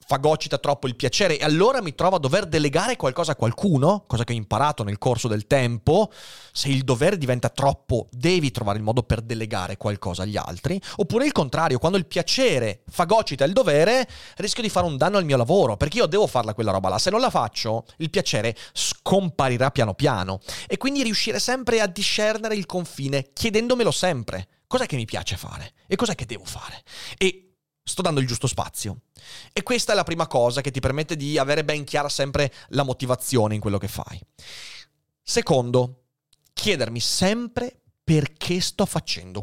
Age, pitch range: 30-49, 115-175 Hz